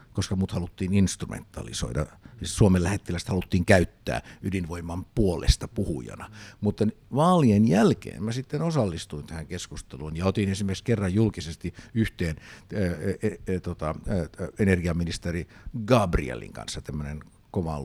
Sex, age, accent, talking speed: male, 60-79, native, 115 wpm